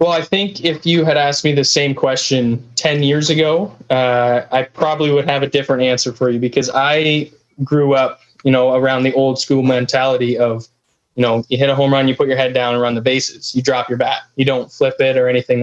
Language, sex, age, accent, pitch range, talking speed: English, male, 20-39, American, 125-145 Hz, 240 wpm